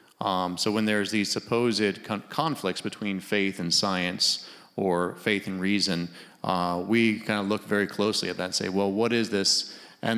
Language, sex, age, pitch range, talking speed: English, male, 30-49, 95-110 Hz, 185 wpm